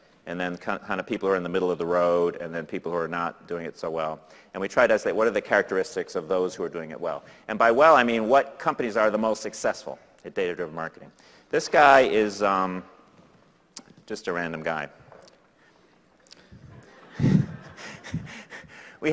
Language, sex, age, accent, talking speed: English, male, 40-59, American, 195 wpm